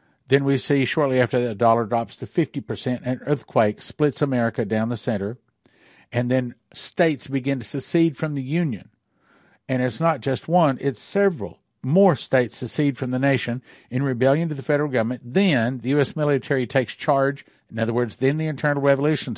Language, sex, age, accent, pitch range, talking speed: English, male, 50-69, American, 125-155 Hz, 180 wpm